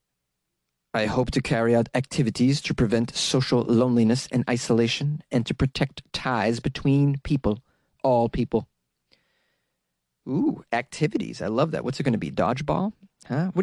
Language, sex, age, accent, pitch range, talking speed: English, male, 30-49, American, 120-165 Hz, 145 wpm